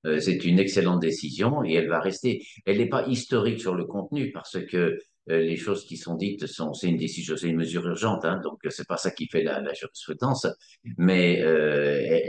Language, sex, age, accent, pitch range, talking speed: French, male, 50-69, French, 85-100 Hz, 205 wpm